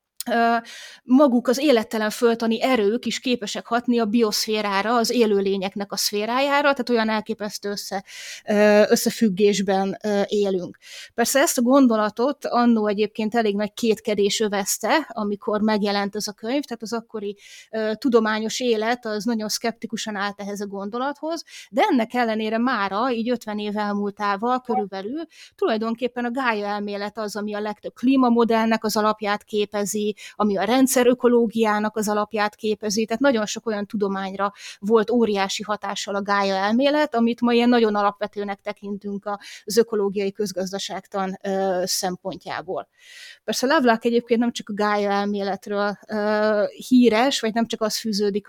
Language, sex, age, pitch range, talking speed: Hungarian, female, 20-39, 205-235 Hz, 140 wpm